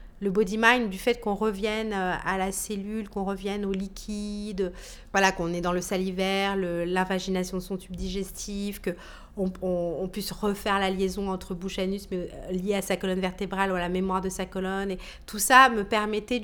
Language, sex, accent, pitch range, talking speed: French, female, French, 185-210 Hz, 195 wpm